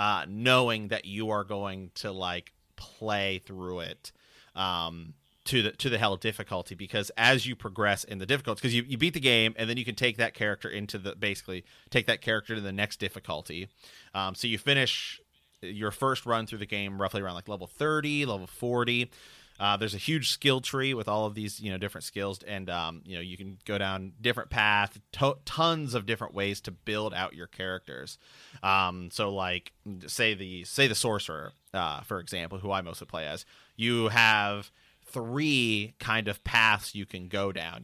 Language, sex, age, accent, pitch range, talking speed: English, male, 30-49, American, 95-115 Hz, 200 wpm